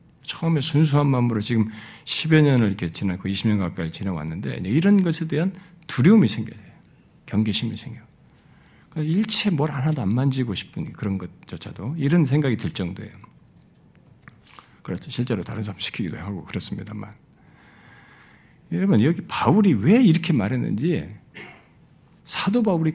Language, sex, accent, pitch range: Korean, male, native, 115-170 Hz